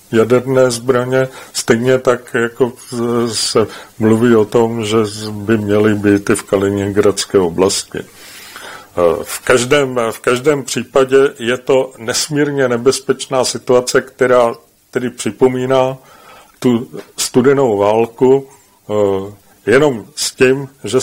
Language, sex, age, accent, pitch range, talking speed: English, male, 40-59, Czech, 105-125 Hz, 105 wpm